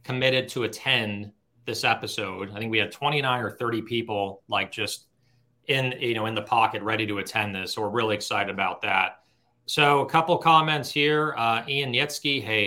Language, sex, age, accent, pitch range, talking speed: English, male, 30-49, American, 105-130 Hz, 190 wpm